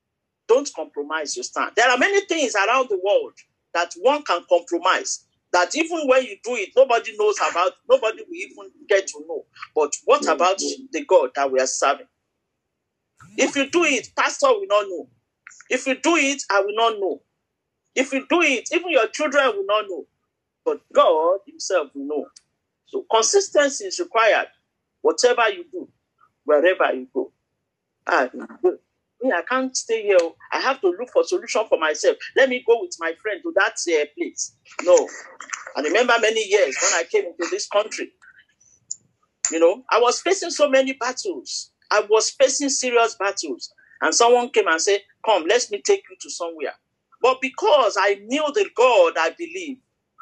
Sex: male